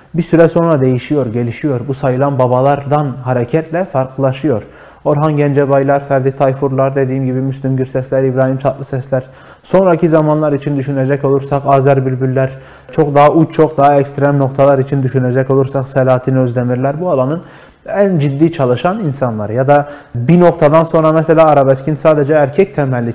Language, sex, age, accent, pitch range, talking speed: Turkish, male, 30-49, native, 130-160 Hz, 145 wpm